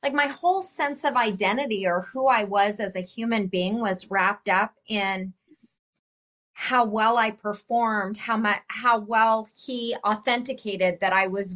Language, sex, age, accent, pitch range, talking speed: English, female, 30-49, American, 195-240 Hz, 155 wpm